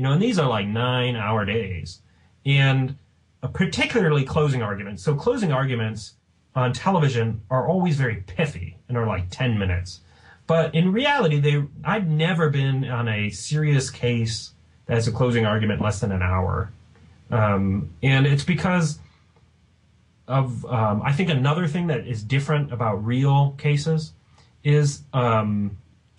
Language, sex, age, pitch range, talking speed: English, male, 30-49, 110-150 Hz, 150 wpm